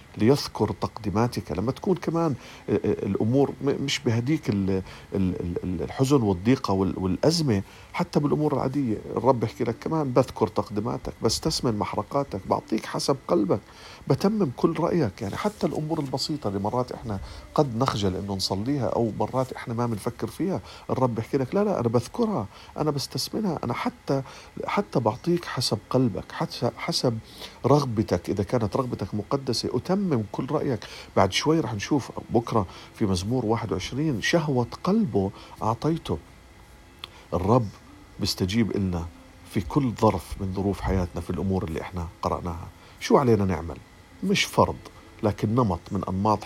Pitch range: 95-135 Hz